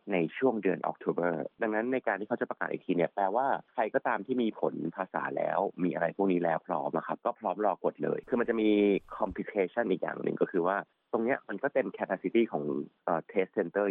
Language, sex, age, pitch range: Thai, male, 30-49, 90-115 Hz